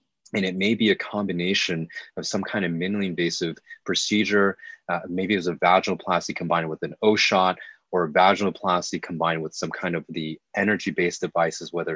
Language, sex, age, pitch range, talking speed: English, male, 20-39, 85-100 Hz, 175 wpm